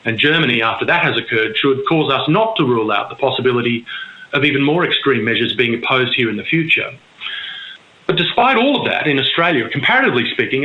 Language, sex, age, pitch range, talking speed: English, male, 30-49, 125-165 Hz, 195 wpm